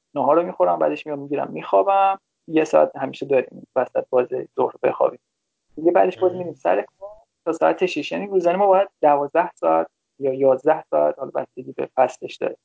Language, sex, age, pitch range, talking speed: Persian, male, 20-39, 140-195 Hz, 175 wpm